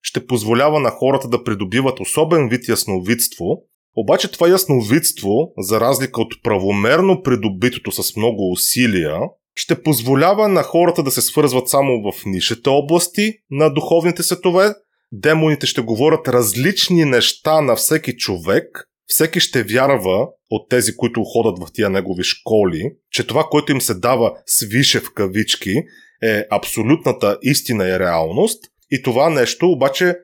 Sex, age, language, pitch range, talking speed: male, 30-49, Bulgarian, 110-165 Hz, 140 wpm